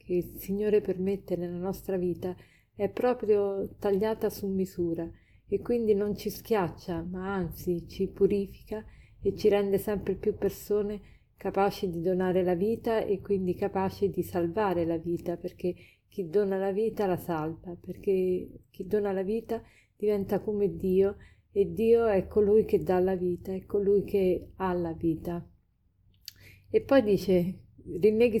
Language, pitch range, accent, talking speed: Italian, 180-210 Hz, native, 150 wpm